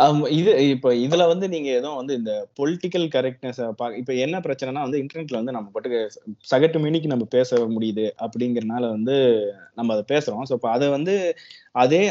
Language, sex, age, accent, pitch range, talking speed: Tamil, male, 20-39, native, 120-165 Hz, 125 wpm